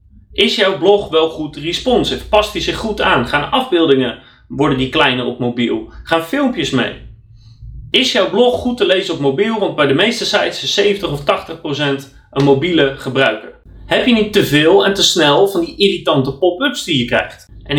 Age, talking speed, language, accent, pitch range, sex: 30-49, 190 wpm, Dutch, Dutch, 135-200 Hz, male